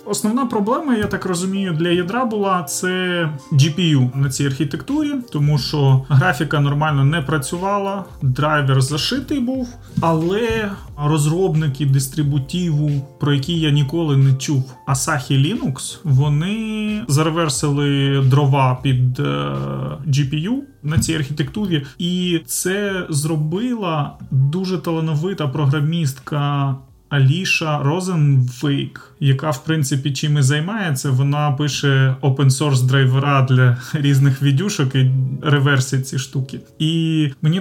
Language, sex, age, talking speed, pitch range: Ukrainian, male, 30-49, 110 wpm, 135-165 Hz